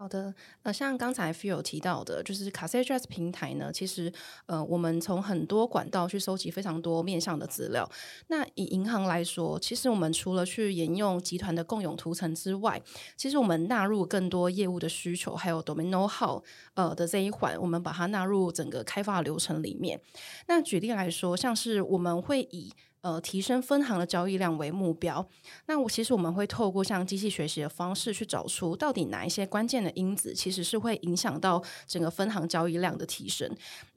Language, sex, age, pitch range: Chinese, female, 20-39, 170-210 Hz